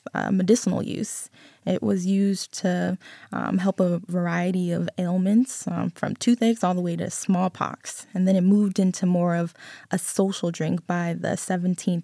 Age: 20-39